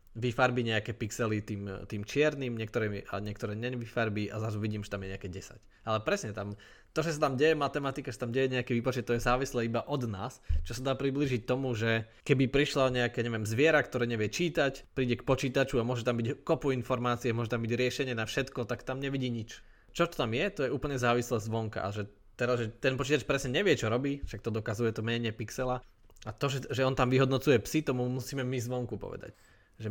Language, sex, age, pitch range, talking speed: Slovak, male, 20-39, 105-130 Hz, 225 wpm